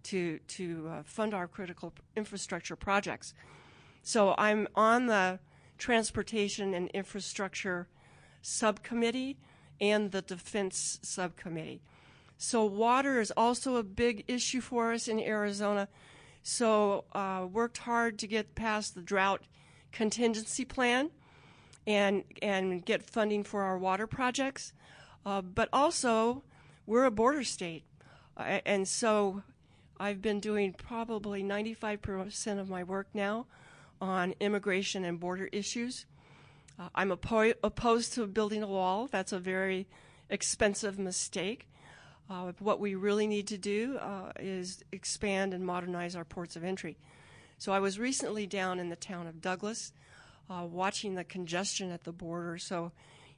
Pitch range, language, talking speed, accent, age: 180-215 Hz, English, 135 wpm, American, 40-59